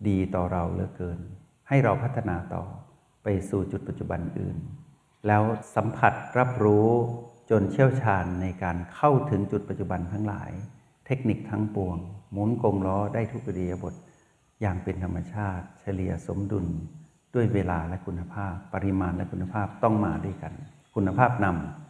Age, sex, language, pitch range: 60-79, male, Thai, 90-115 Hz